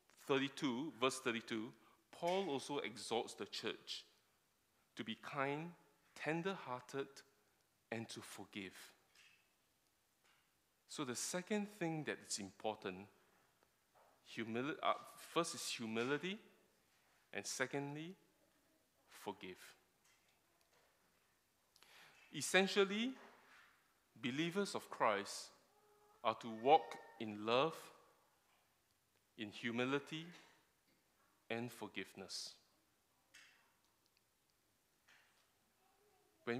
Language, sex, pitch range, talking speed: English, male, 110-160 Hz, 70 wpm